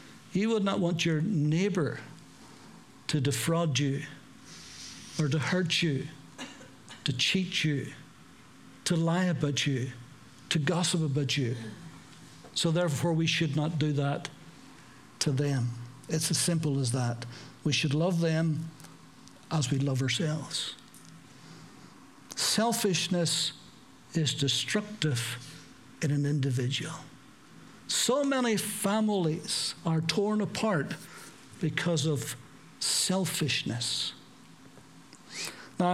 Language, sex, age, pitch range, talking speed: English, male, 60-79, 145-185 Hz, 105 wpm